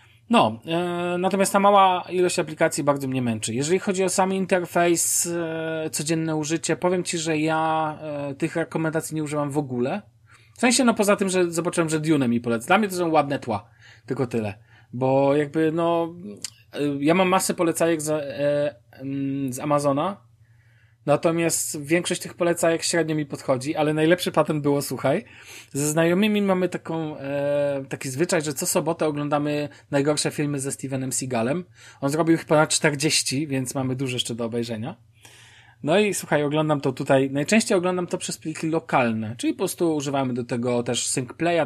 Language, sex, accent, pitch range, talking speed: Polish, male, native, 130-165 Hz, 175 wpm